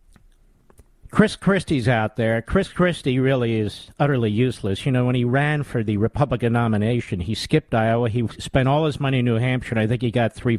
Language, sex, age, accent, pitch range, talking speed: English, male, 50-69, American, 125-175 Hz, 205 wpm